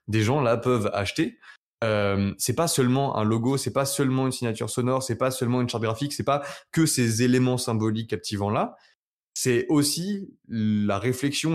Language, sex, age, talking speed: French, male, 20-39, 180 wpm